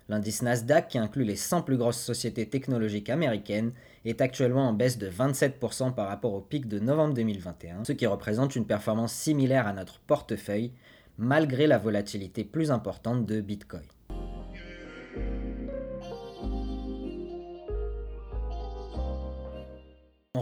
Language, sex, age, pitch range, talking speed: French, male, 20-39, 105-135 Hz, 120 wpm